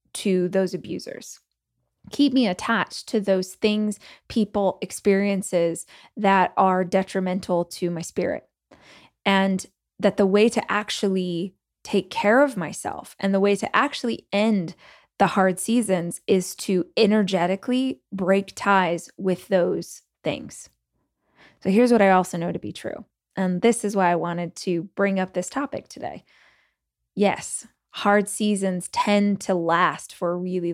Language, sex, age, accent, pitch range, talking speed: English, female, 20-39, American, 180-205 Hz, 145 wpm